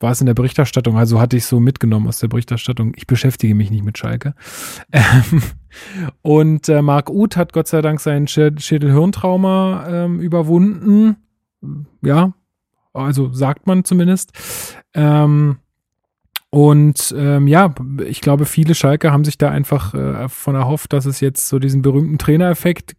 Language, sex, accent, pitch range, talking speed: German, male, German, 135-160 Hz, 155 wpm